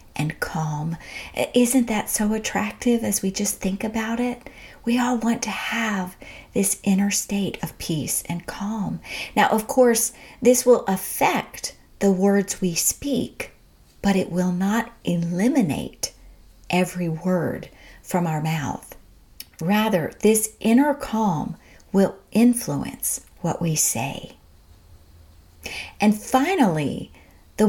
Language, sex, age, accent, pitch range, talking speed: English, female, 50-69, American, 165-220 Hz, 120 wpm